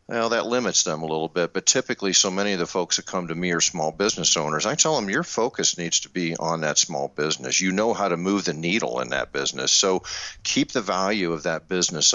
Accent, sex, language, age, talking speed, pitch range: American, male, English, 50-69, 250 wpm, 80-110 Hz